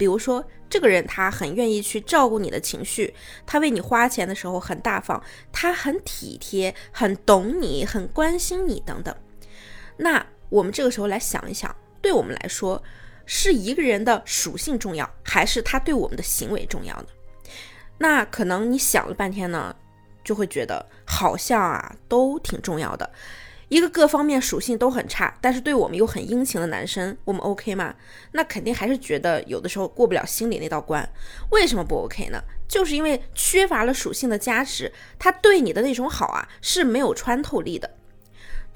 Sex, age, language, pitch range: female, 20-39, Chinese, 205-310 Hz